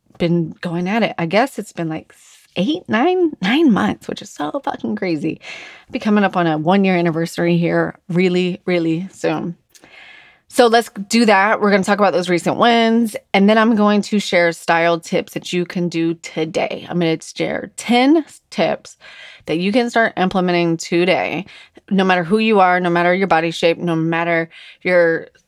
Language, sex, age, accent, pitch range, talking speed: English, female, 20-39, American, 170-205 Hz, 190 wpm